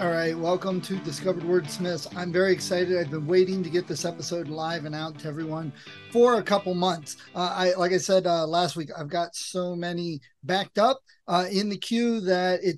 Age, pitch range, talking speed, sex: 30-49, 170-205 Hz, 205 wpm, male